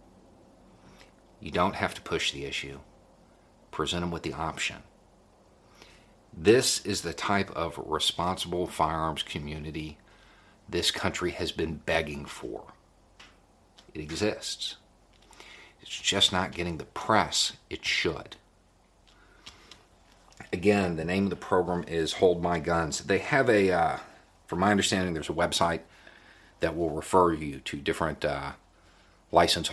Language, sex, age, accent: English, male, 50-69, American